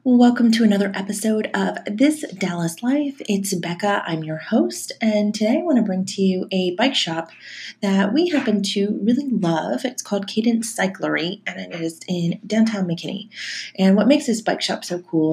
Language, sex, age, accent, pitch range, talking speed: English, female, 30-49, American, 165-215 Hz, 190 wpm